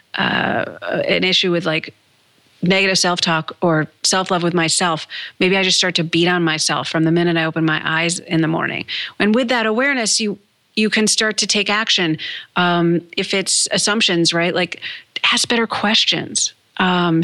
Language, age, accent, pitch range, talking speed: English, 40-59, American, 175-245 Hz, 175 wpm